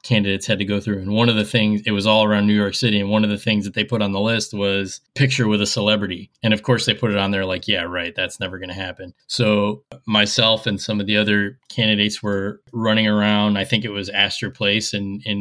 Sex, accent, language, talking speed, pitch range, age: male, American, English, 265 wpm, 105-125 Hz, 20-39